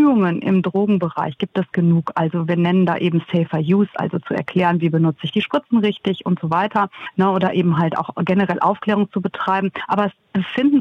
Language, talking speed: German, 195 wpm